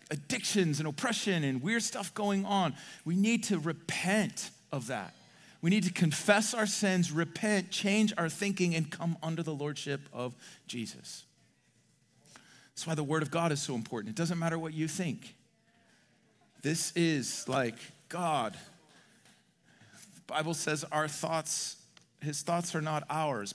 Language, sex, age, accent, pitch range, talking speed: English, male, 40-59, American, 140-175 Hz, 155 wpm